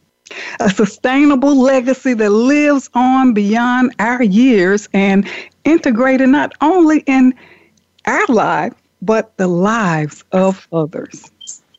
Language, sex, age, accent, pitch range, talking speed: English, female, 60-79, American, 195-270 Hz, 105 wpm